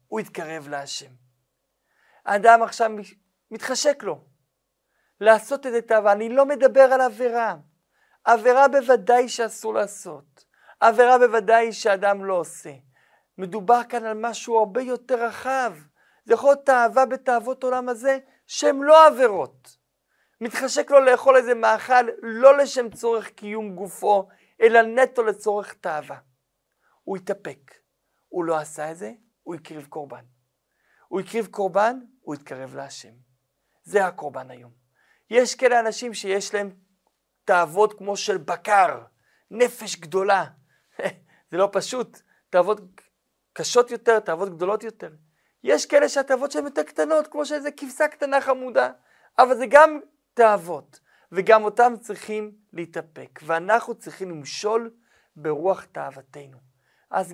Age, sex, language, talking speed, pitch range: 50-69, male, Hebrew, 120 wpm, 175-250 Hz